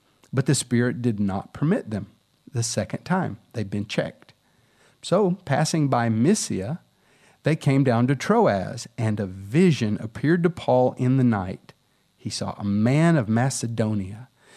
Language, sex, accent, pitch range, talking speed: English, male, American, 115-150 Hz, 150 wpm